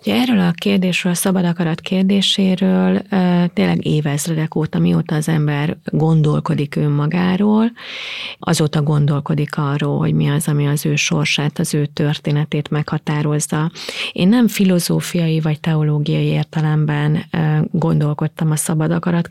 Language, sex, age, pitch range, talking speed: Hungarian, female, 30-49, 150-185 Hz, 120 wpm